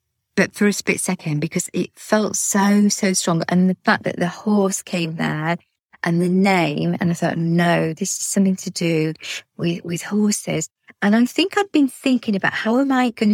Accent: British